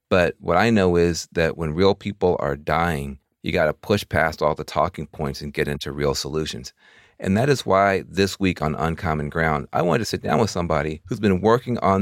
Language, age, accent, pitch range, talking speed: English, 40-59, American, 80-100 Hz, 225 wpm